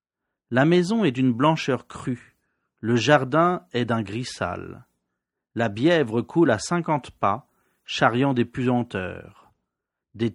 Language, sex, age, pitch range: Japanese, male, 40-59, 105-145 Hz